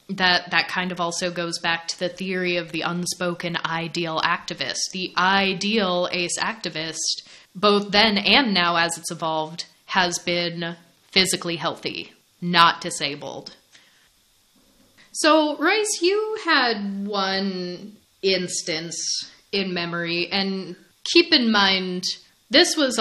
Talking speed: 120 wpm